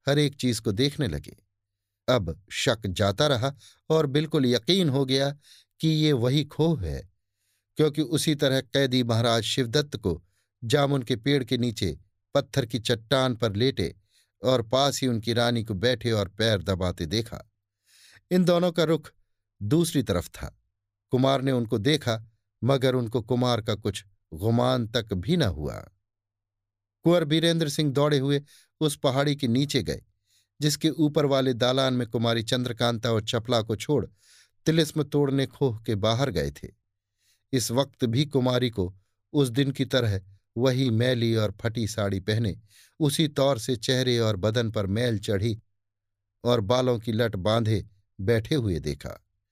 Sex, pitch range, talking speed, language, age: male, 105-140 Hz, 155 wpm, Hindi, 50-69